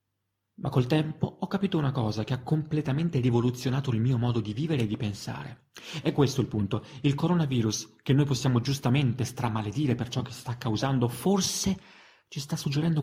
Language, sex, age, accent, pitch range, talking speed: Italian, male, 30-49, native, 110-145 Hz, 185 wpm